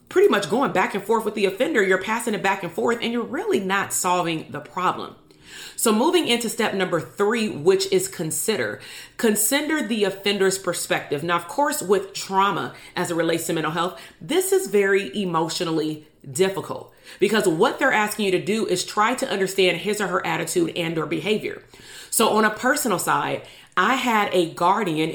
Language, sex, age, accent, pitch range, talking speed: English, female, 40-59, American, 165-215 Hz, 185 wpm